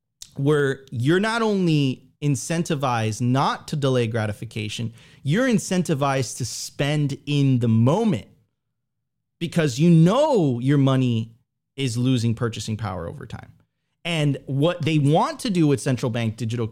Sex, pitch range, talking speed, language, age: male, 130-185 Hz, 135 wpm, English, 30-49